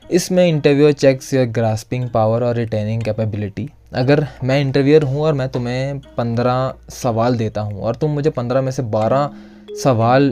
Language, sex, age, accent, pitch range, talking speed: Hindi, male, 20-39, native, 110-135 Hz, 165 wpm